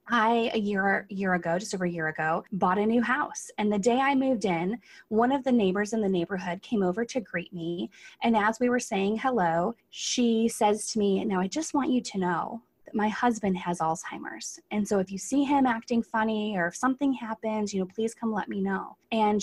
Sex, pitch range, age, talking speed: female, 180-235 Hz, 20-39, 230 wpm